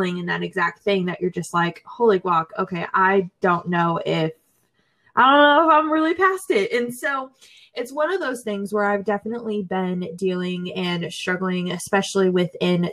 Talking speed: 180 wpm